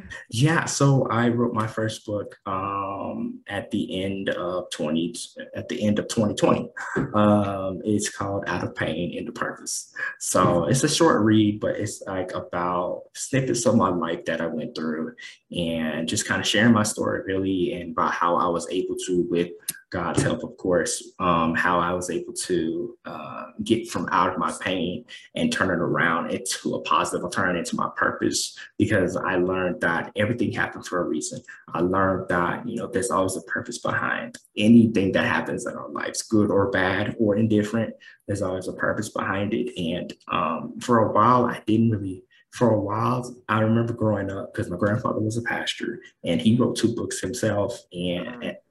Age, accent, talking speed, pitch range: 20-39, American, 190 wpm, 95-120 Hz